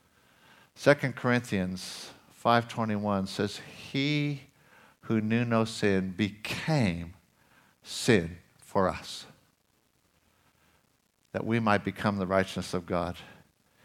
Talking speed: 90 wpm